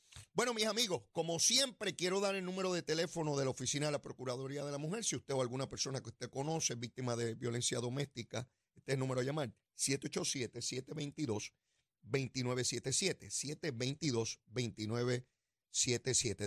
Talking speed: 145 wpm